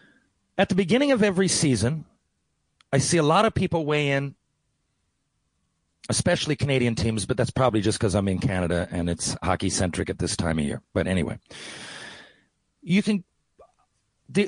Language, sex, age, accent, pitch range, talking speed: English, male, 40-59, American, 125-190 Hz, 160 wpm